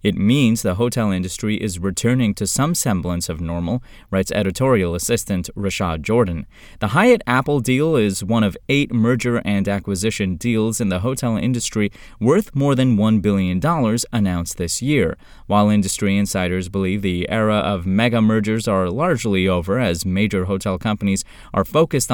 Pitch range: 95-125 Hz